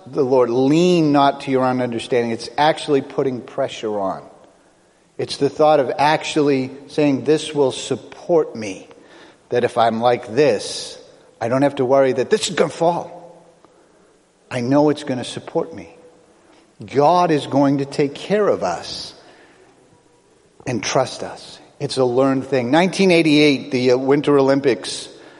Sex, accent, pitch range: male, American, 145-185 Hz